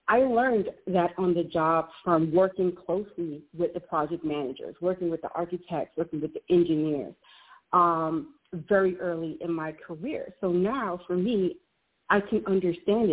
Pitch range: 160-190 Hz